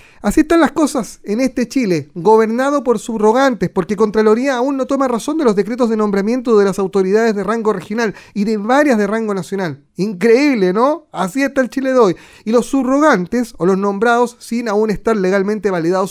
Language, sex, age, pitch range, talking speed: Spanish, male, 30-49, 195-255 Hz, 195 wpm